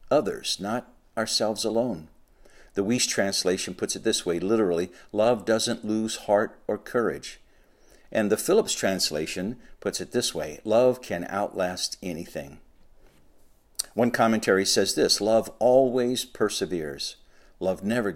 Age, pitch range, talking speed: 60-79, 90-115 Hz, 130 wpm